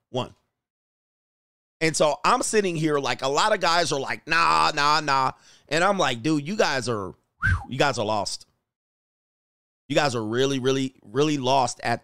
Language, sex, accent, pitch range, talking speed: English, male, American, 125-165 Hz, 175 wpm